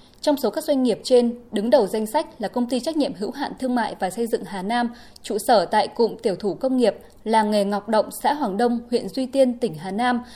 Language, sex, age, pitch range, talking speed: Vietnamese, female, 20-39, 205-260 Hz, 260 wpm